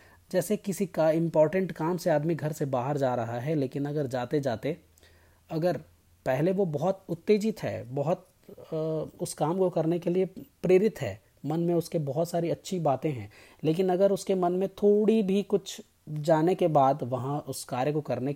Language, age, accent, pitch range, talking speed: Hindi, 30-49, native, 130-175 Hz, 185 wpm